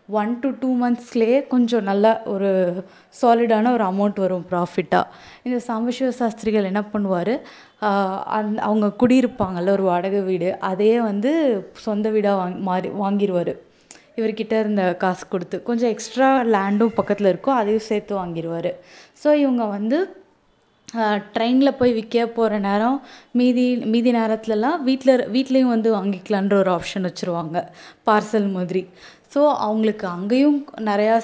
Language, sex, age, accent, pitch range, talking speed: Tamil, female, 20-39, native, 195-245 Hz, 125 wpm